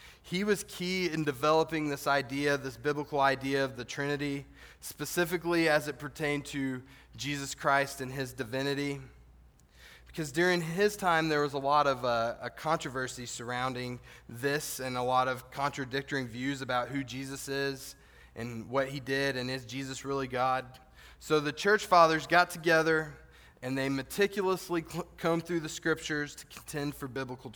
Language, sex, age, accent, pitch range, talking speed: English, male, 20-39, American, 125-155 Hz, 155 wpm